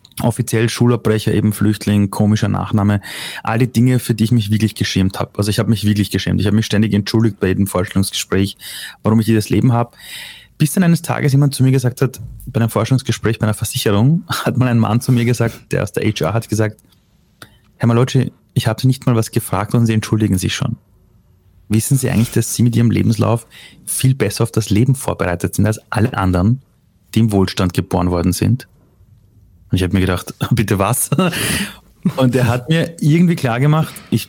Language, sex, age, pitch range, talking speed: German, male, 30-49, 105-125 Hz, 200 wpm